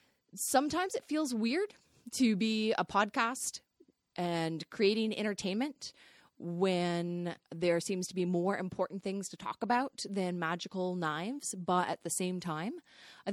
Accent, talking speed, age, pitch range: American, 140 wpm, 20-39, 170-225 Hz